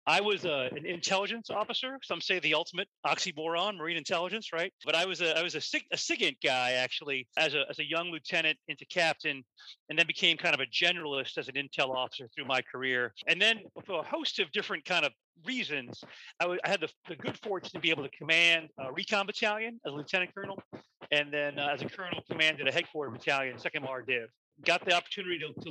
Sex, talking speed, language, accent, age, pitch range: male, 210 wpm, English, American, 40-59, 150-180 Hz